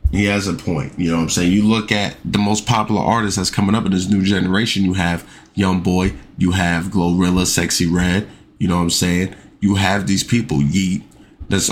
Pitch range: 90-110 Hz